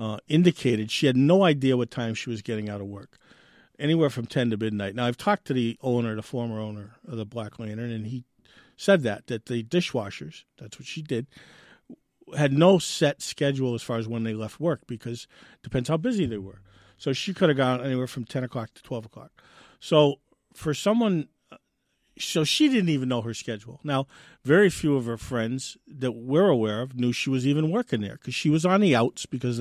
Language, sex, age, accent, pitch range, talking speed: English, male, 50-69, American, 115-145 Hz, 215 wpm